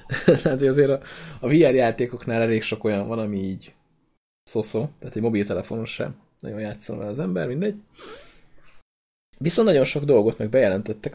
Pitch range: 110-130 Hz